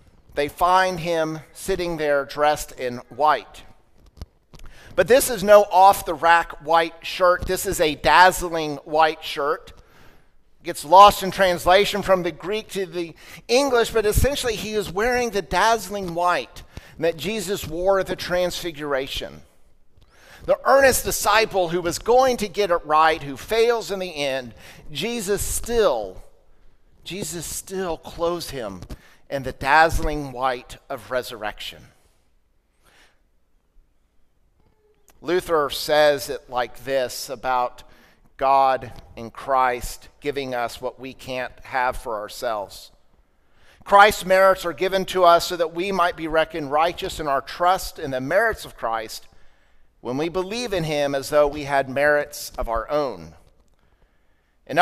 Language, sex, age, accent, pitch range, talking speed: English, male, 50-69, American, 135-185 Hz, 140 wpm